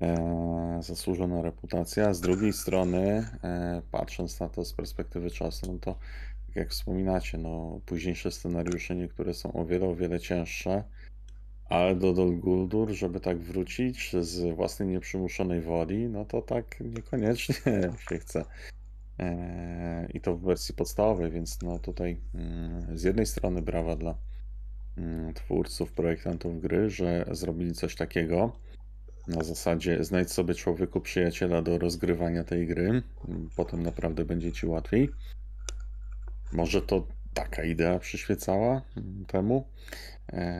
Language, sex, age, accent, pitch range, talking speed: Polish, male, 30-49, native, 85-100 Hz, 125 wpm